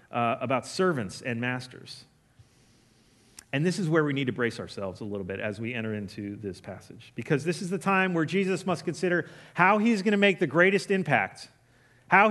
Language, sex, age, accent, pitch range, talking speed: English, male, 40-59, American, 130-195 Hz, 200 wpm